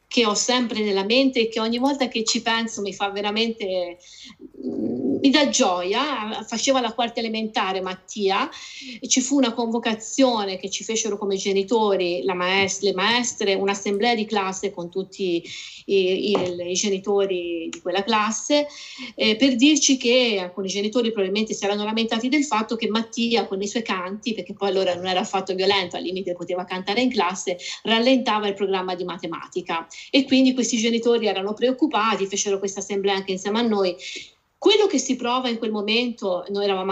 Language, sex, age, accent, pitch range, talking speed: Italian, female, 30-49, native, 195-245 Hz, 175 wpm